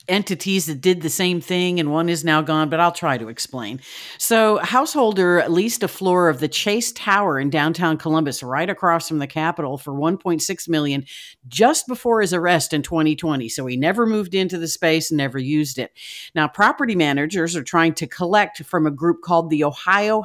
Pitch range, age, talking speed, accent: 155-200 Hz, 50-69, 195 wpm, American